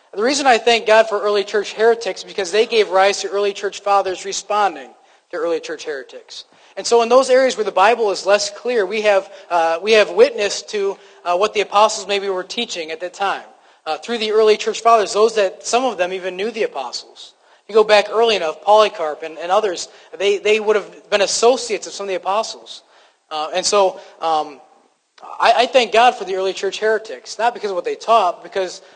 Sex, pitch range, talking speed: male, 185-225 Hz, 220 wpm